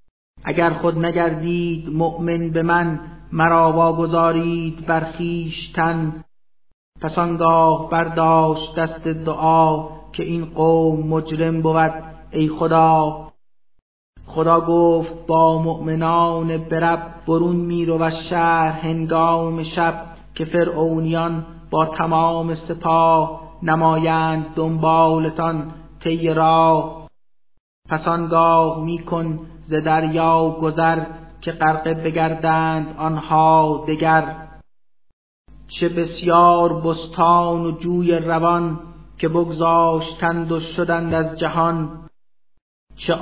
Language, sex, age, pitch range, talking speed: Persian, male, 30-49, 160-165 Hz, 90 wpm